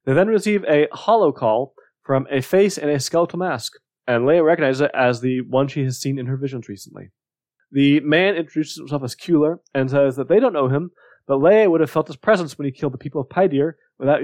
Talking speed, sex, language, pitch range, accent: 230 wpm, male, English, 135-180 Hz, American